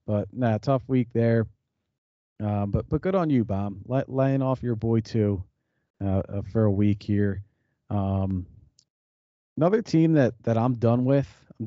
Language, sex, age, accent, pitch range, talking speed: English, male, 40-59, American, 110-130 Hz, 160 wpm